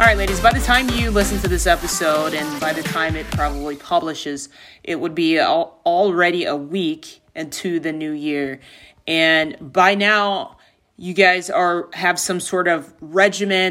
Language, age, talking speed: English, 30-49, 170 wpm